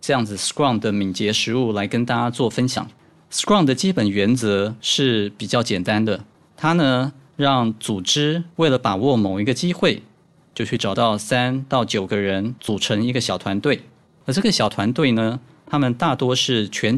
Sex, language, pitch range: male, Chinese, 105-135 Hz